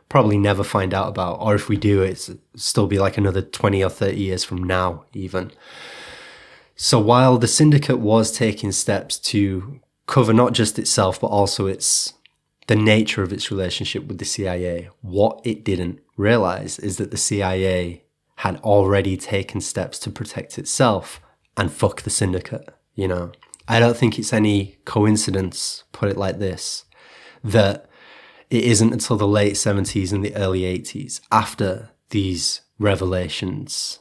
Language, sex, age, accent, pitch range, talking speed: English, male, 20-39, British, 95-110 Hz, 155 wpm